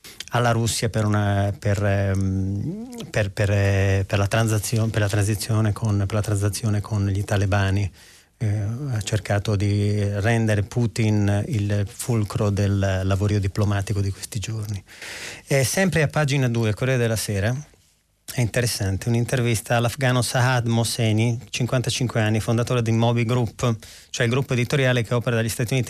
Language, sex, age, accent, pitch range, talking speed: Italian, male, 30-49, native, 105-120 Hz, 130 wpm